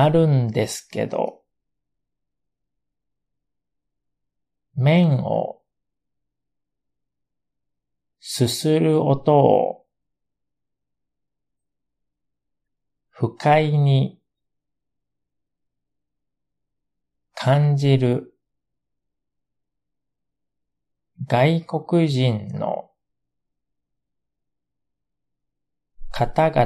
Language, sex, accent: Japanese, male, native